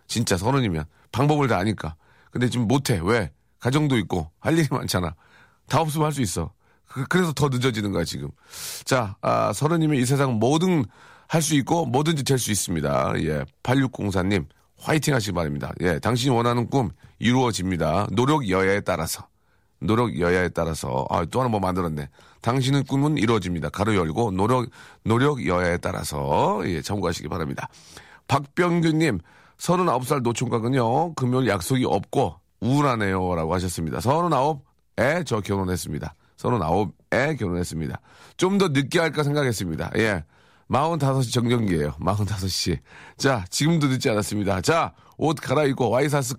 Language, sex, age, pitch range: Korean, male, 40-59, 95-140 Hz